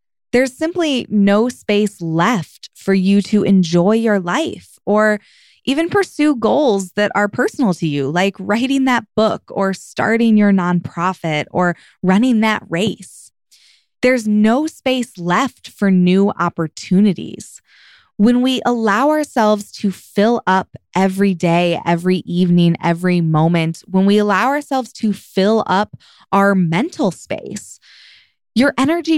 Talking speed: 130 wpm